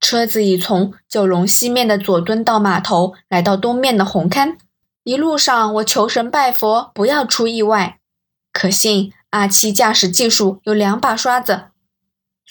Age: 20-39